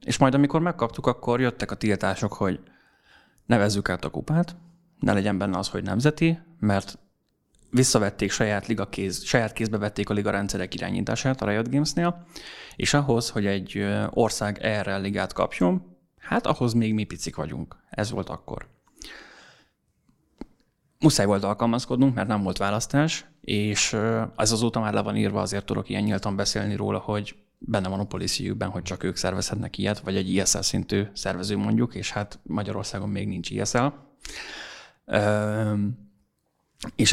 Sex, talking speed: male, 150 wpm